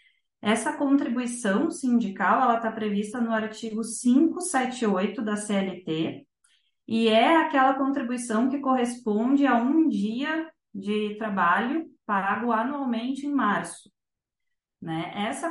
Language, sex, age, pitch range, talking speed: Portuguese, female, 20-39, 200-250 Hz, 105 wpm